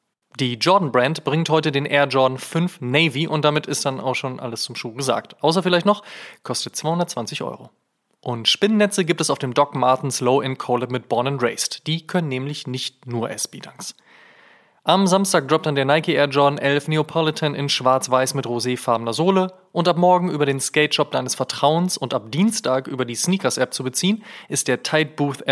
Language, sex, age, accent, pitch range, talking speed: German, male, 20-39, German, 125-160 Hz, 185 wpm